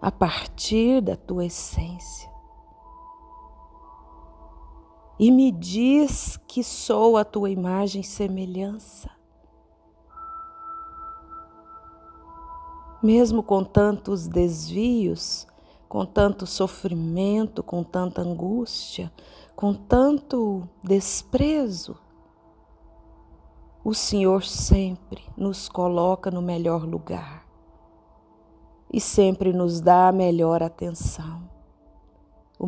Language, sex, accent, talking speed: Portuguese, female, Brazilian, 80 wpm